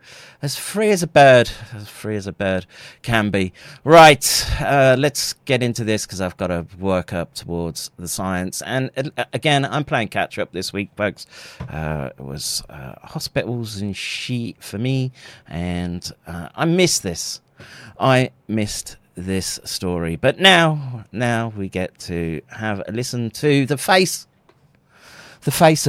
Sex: male